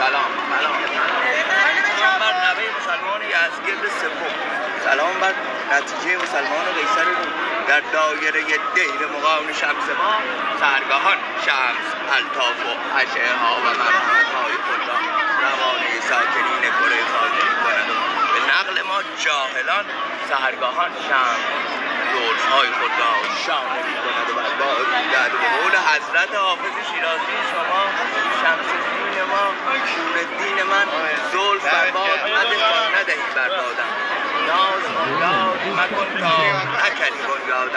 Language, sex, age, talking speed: Persian, male, 30-49, 110 wpm